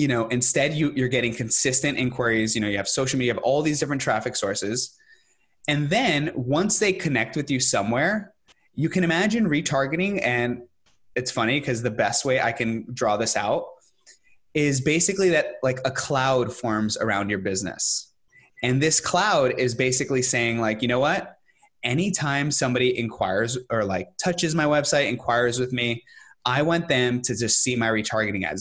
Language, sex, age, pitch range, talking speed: English, male, 20-39, 115-150 Hz, 175 wpm